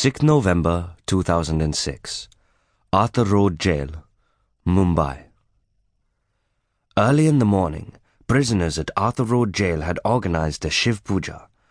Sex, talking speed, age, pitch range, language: male, 110 wpm, 30-49, 85-115 Hz, English